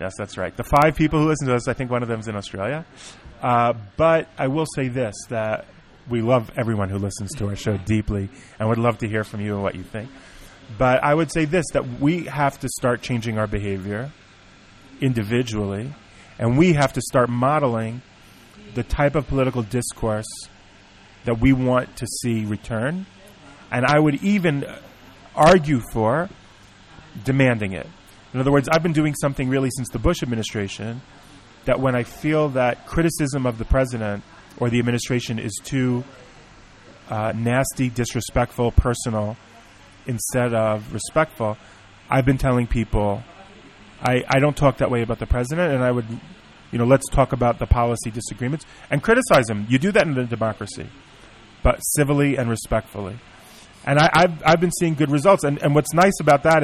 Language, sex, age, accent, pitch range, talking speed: English, male, 30-49, American, 110-140 Hz, 180 wpm